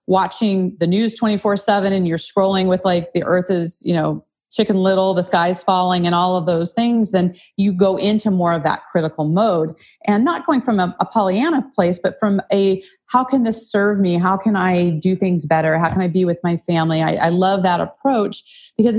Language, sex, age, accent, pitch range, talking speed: English, female, 30-49, American, 165-205 Hz, 215 wpm